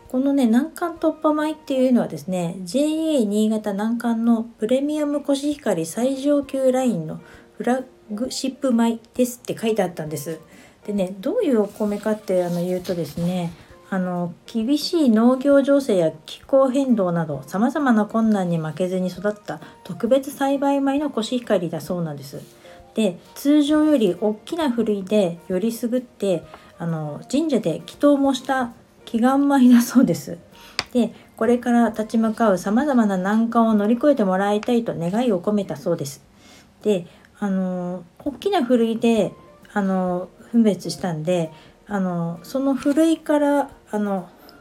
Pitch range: 185-270 Hz